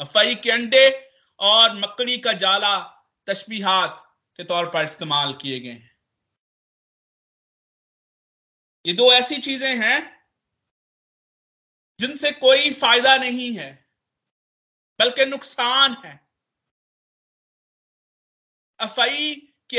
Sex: male